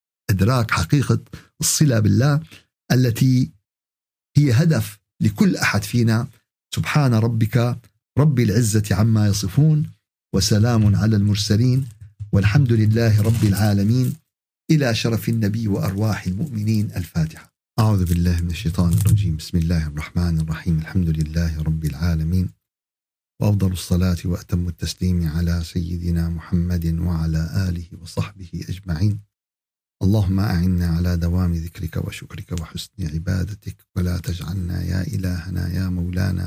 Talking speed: 110 wpm